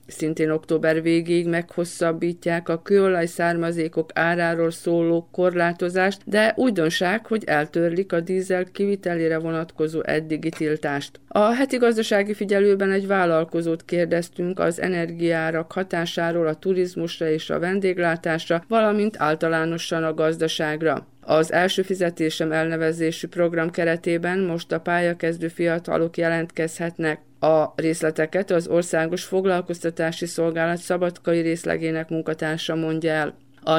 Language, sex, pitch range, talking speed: Hungarian, female, 160-180 Hz, 110 wpm